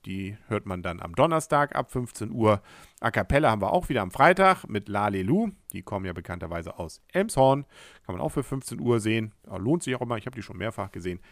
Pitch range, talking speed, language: 95-140 Hz, 230 wpm, German